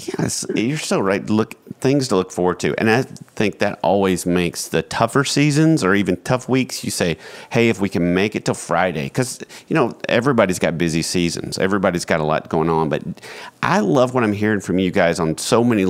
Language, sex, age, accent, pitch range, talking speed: English, male, 40-59, American, 90-125 Hz, 220 wpm